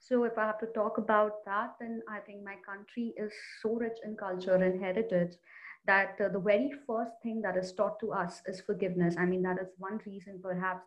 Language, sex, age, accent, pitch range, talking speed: English, female, 30-49, Indian, 190-230 Hz, 220 wpm